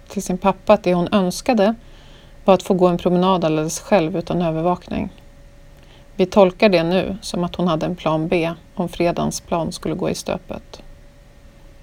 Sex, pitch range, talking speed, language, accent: female, 170-200 Hz, 180 wpm, English, Swedish